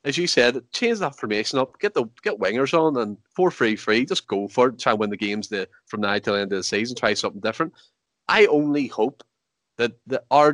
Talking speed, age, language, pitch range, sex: 245 wpm, 20-39, English, 110-145 Hz, male